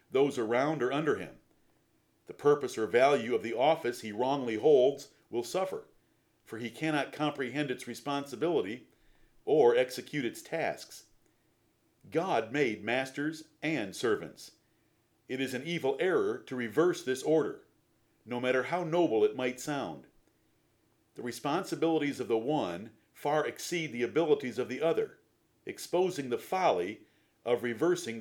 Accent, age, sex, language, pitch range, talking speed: American, 50-69, male, English, 120-160 Hz, 140 wpm